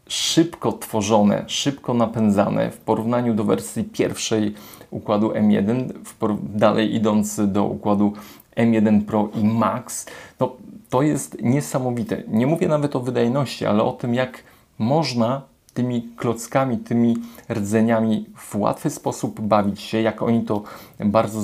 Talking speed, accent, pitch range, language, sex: 125 wpm, native, 105-120 Hz, Polish, male